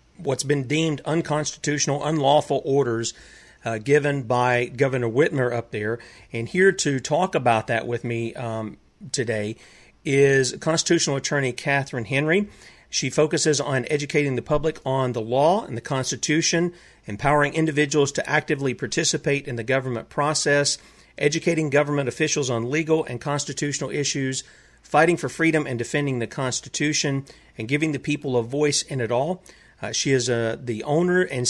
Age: 40-59